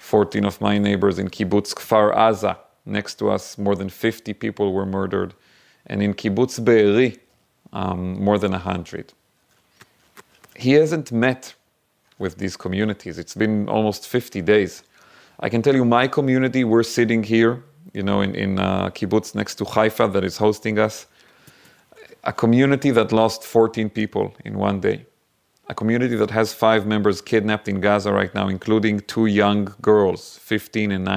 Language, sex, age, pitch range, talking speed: English, male, 30-49, 100-115 Hz, 160 wpm